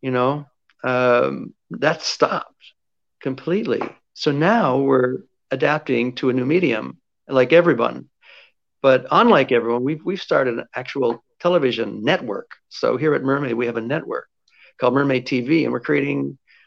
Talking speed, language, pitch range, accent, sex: 145 wpm, English, 125-160 Hz, American, male